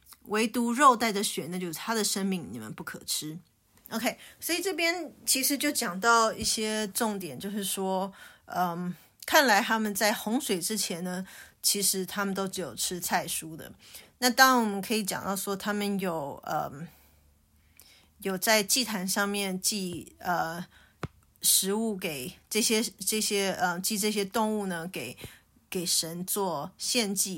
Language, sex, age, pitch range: English, female, 20-39, 180-220 Hz